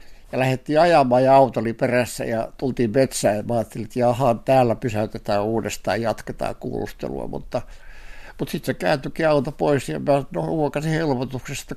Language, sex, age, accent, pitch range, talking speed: Finnish, male, 60-79, native, 120-145 Hz, 140 wpm